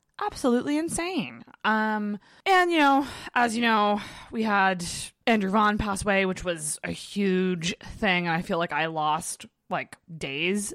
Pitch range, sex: 170-220 Hz, female